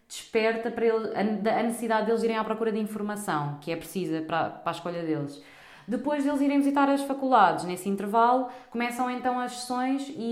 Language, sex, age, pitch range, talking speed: Portuguese, female, 20-39, 175-230 Hz, 185 wpm